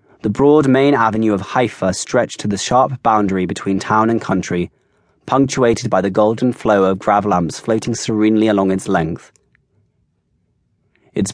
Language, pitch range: English, 95-120 Hz